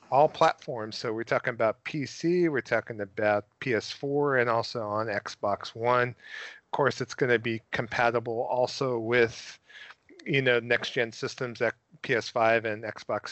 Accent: American